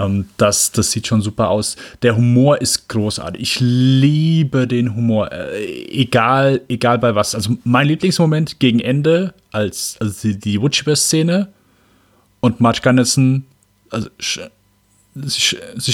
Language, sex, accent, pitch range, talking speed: German, male, German, 110-140 Hz, 145 wpm